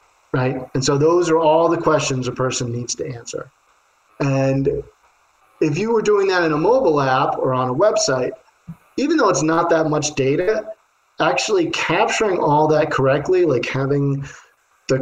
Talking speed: 170 wpm